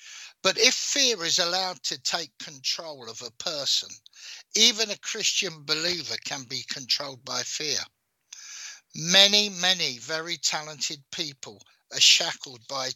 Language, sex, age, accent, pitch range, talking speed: English, male, 60-79, British, 145-195 Hz, 130 wpm